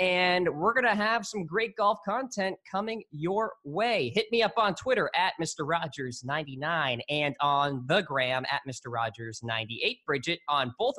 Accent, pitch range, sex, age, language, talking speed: American, 140-200 Hz, male, 20-39, English, 155 wpm